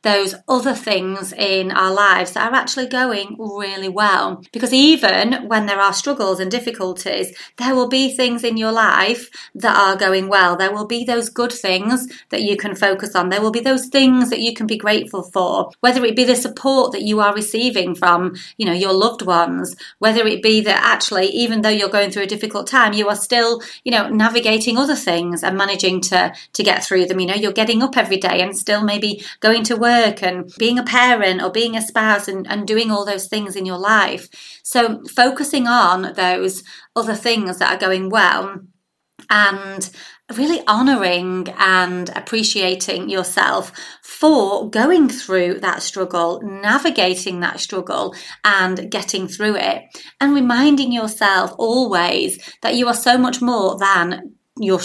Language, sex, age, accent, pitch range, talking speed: English, female, 30-49, British, 190-235 Hz, 180 wpm